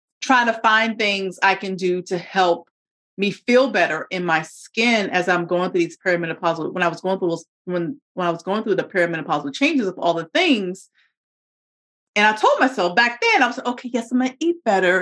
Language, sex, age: English, female, 30-49